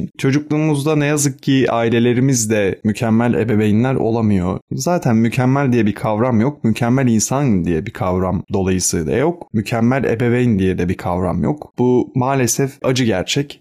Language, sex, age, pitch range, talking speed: Turkish, male, 30-49, 110-135 Hz, 140 wpm